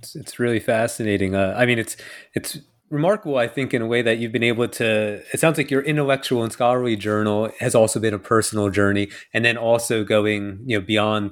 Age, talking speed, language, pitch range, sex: 30-49, 215 wpm, English, 105-120 Hz, male